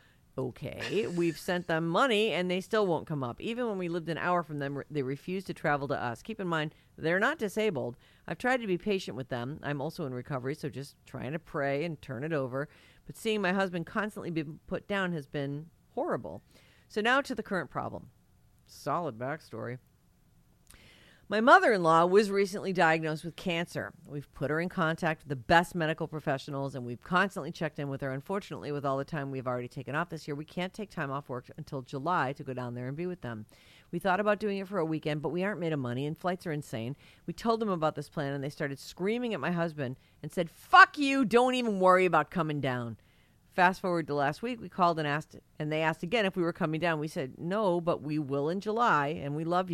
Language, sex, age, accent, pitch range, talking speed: English, female, 40-59, American, 140-180 Hz, 230 wpm